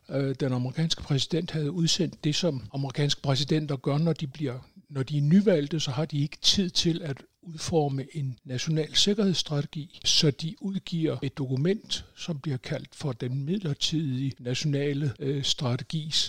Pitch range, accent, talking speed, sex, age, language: 135-165 Hz, native, 150 wpm, male, 60-79, Danish